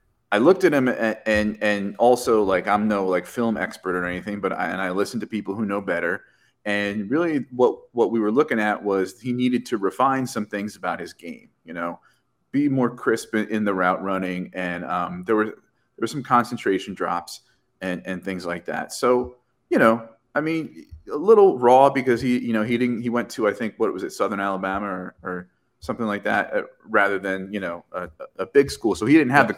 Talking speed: 225 wpm